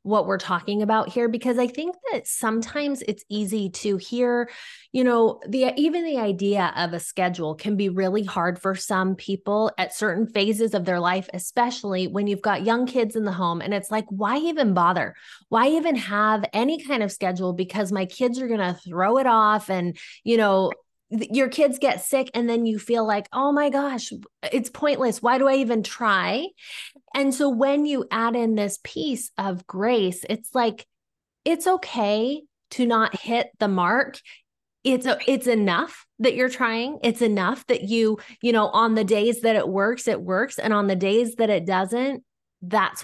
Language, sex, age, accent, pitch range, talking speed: English, female, 20-39, American, 195-250 Hz, 190 wpm